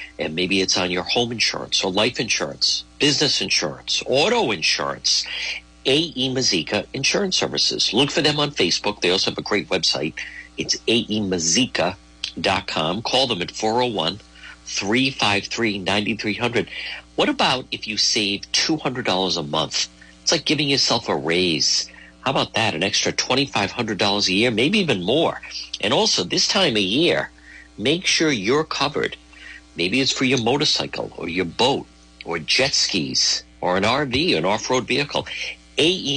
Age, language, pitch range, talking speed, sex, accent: 50-69, English, 80-130 Hz, 145 wpm, male, American